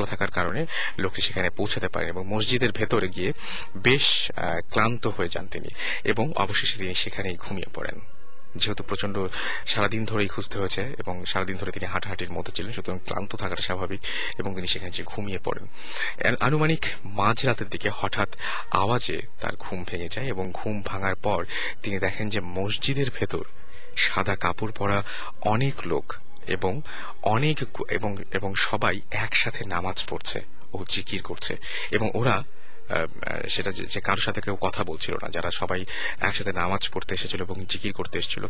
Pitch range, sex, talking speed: 95-110 Hz, male, 150 wpm